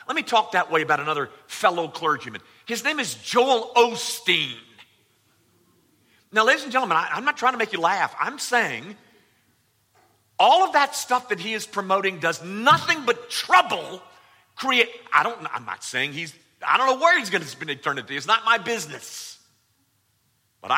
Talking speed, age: 175 wpm, 40-59